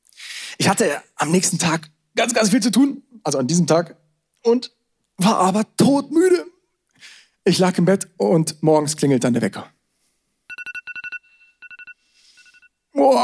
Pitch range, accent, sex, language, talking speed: 175-250 Hz, German, male, German, 130 wpm